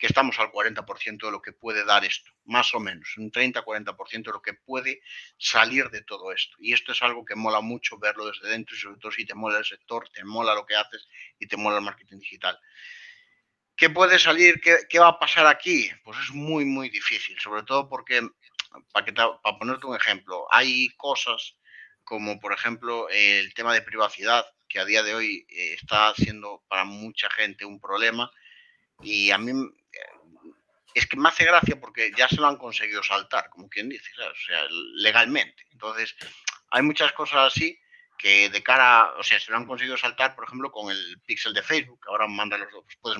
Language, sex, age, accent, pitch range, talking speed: Spanish, male, 30-49, Spanish, 105-150 Hz, 195 wpm